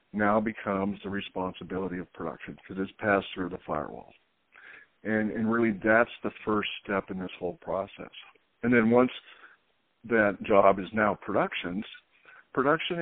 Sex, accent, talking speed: male, American, 150 wpm